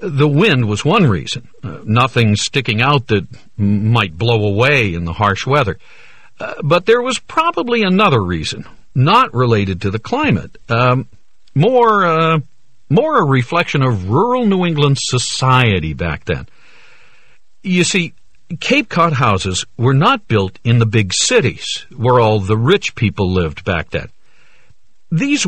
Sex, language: male, Chinese